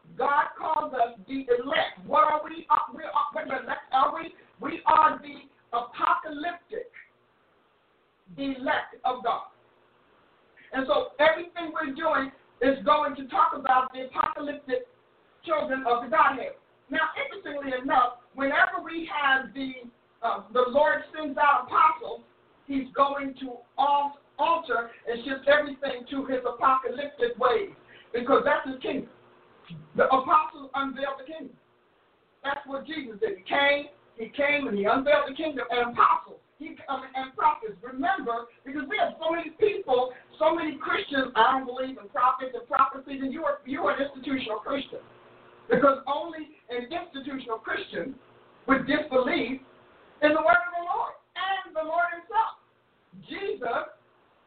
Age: 50-69